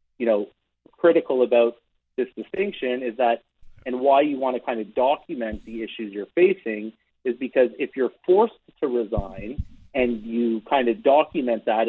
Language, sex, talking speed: English, male, 165 wpm